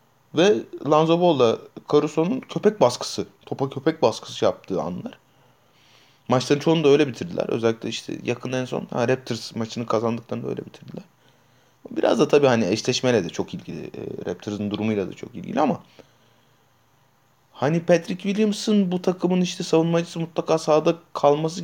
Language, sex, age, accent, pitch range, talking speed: Turkish, male, 30-49, native, 120-155 Hz, 140 wpm